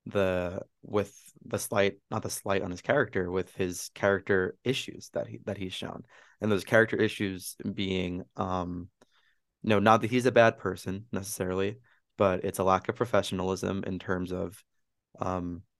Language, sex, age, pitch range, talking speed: English, male, 20-39, 95-110 Hz, 165 wpm